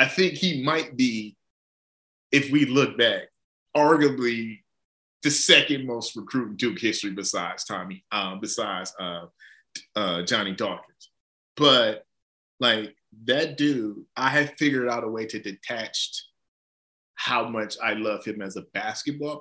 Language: English